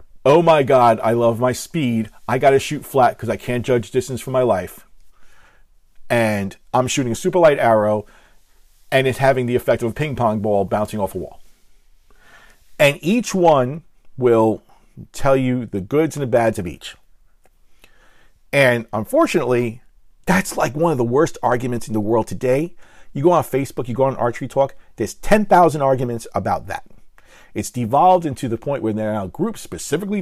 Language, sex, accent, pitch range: English, male, American, 110-140 Hz